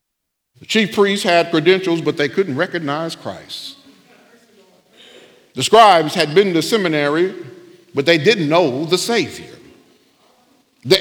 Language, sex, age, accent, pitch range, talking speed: English, male, 50-69, American, 155-205 Hz, 125 wpm